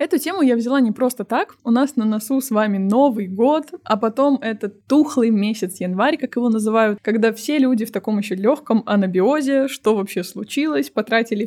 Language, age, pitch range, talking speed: Russian, 20-39, 210-265 Hz, 190 wpm